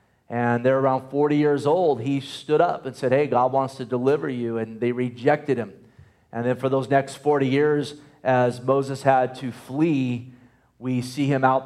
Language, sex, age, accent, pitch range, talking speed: English, male, 30-49, American, 120-140 Hz, 190 wpm